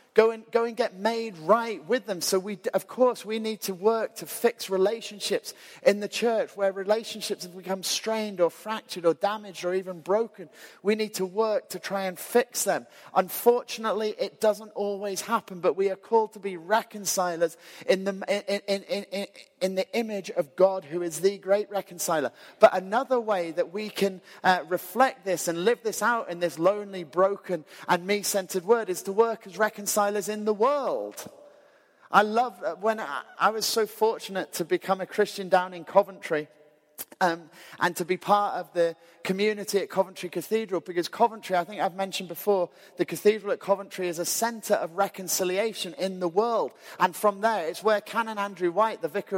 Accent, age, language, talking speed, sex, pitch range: British, 30-49, English, 180 wpm, male, 175-215 Hz